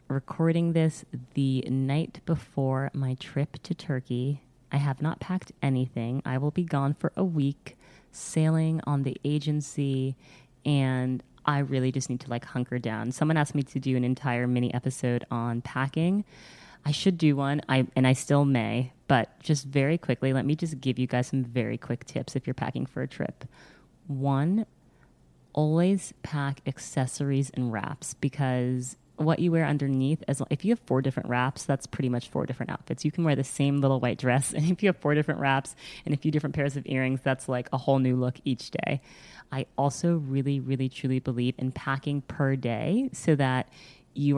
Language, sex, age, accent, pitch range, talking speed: English, female, 20-39, American, 130-150 Hz, 190 wpm